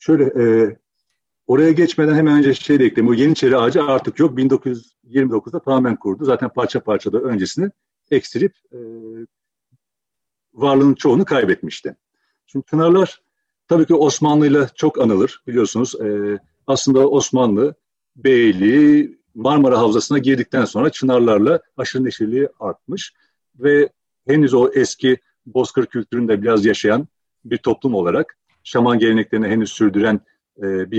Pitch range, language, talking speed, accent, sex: 110-150 Hz, Turkish, 120 wpm, native, male